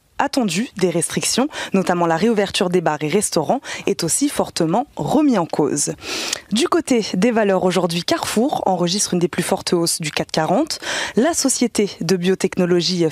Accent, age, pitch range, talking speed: French, 20-39, 175-265 Hz, 155 wpm